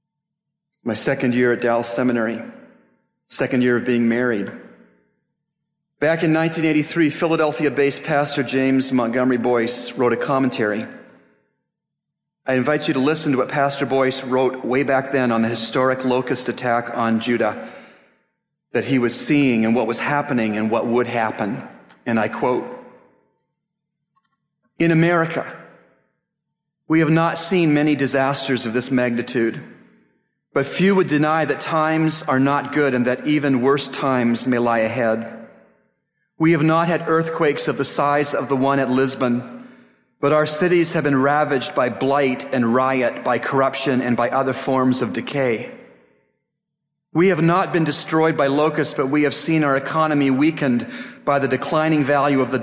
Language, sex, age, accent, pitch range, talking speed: English, male, 40-59, American, 125-155 Hz, 155 wpm